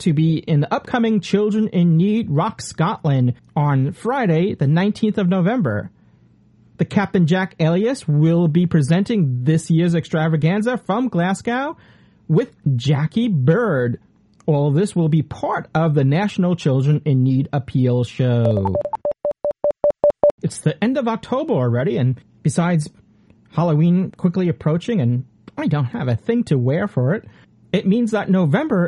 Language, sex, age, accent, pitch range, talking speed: English, male, 40-59, American, 135-190 Hz, 145 wpm